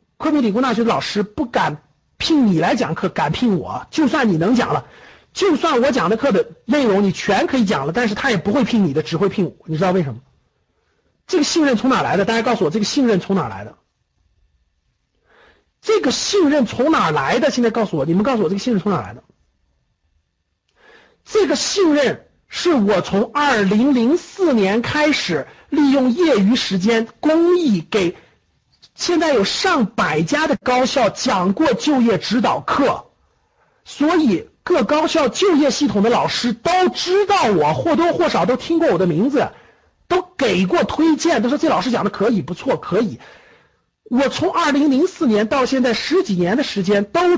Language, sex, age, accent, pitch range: Chinese, male, 50-69, native, 205-310 Hz